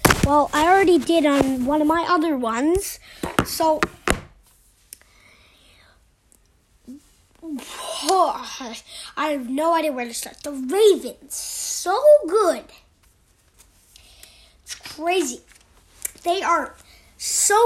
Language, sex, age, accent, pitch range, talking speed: English, female, 20-39, American, 260-360 Hz, 95 wpm